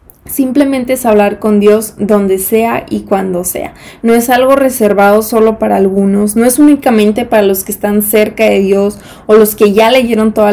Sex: female